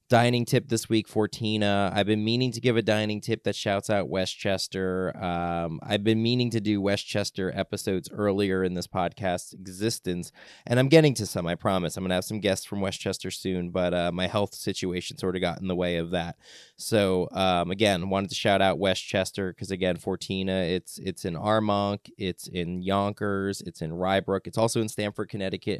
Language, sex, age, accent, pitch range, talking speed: English, male, 20-39, American, 95-115 Hz, 200 wpm